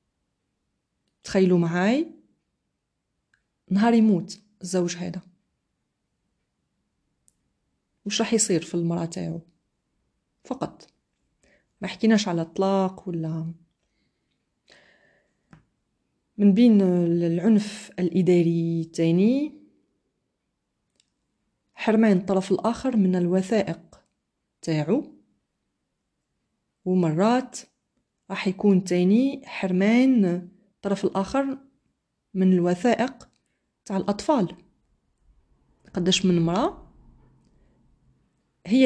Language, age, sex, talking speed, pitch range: Arabic, 30-49, female, 70 wpm, 175-225 Hz